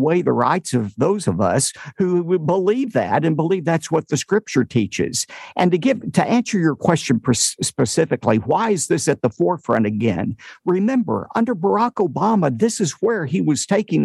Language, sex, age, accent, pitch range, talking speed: English, male, 50-69, American, 135-195 Hz, 185 wpm